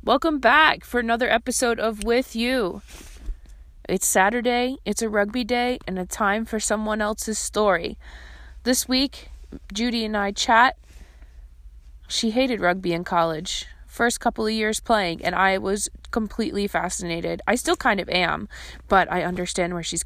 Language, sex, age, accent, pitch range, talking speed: English, female, 20-39, American, 160-210 Hz, 155 wpm